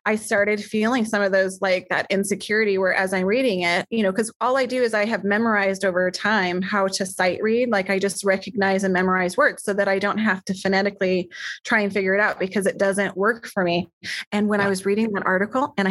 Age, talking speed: 20-39, 240 wpm